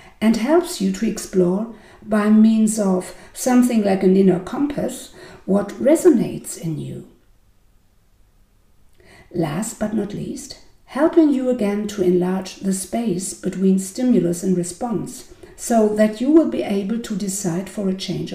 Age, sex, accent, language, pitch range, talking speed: 50-69, female, German, English, 155-220 Hz, 140 wpm